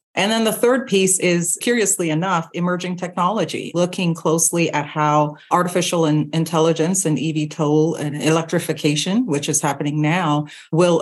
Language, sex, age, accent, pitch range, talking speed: English, female, 40-59, American, 150-185 Hz, 140 wpm